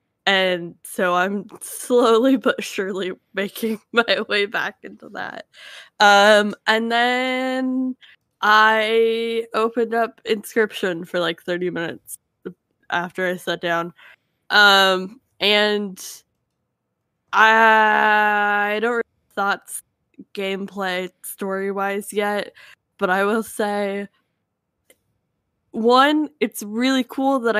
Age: 10-29